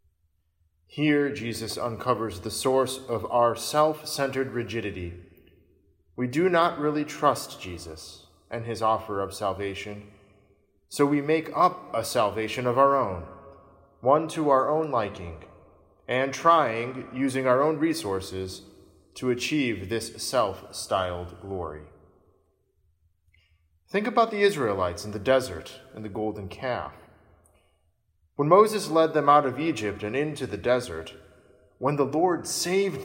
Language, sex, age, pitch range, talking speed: English, male, 20-39, 95-145 Hz, 130 wpm